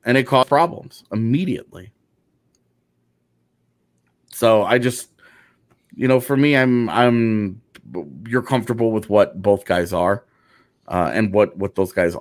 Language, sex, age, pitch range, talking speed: English, male, 30-49, 95-120 Hz, 135 wpm